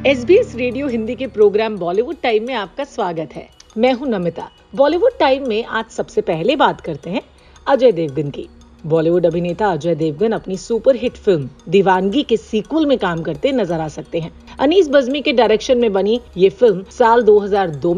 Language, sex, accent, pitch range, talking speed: Hindi, female, native, 175-250 Hz, 185 wpm